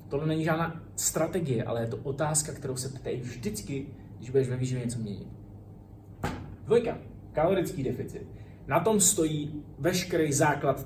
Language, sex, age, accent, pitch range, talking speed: Czech, male, 20-39, native, 120-160 Hz, 145 wpm